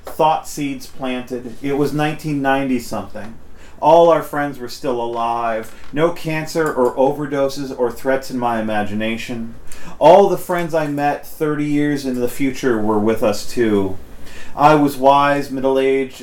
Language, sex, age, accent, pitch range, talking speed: English, male, 40-59, American, 100-135 Hz, 145 wpm